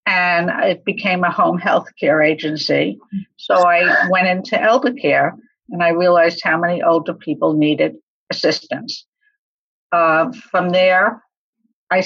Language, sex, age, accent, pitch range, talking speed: English, female, 60-79, American, 165-220 Hz, 135 wpm